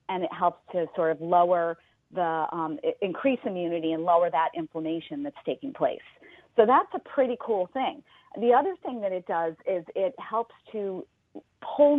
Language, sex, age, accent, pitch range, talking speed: English, female, 40-59, American, 160-210 Hz, 175 wpm